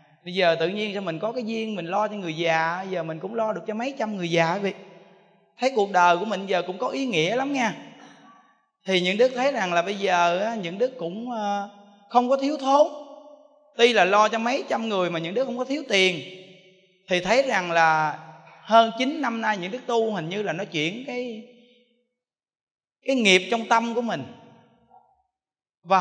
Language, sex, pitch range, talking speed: Vietnamese, male, 185-250 Hz, 210 wpm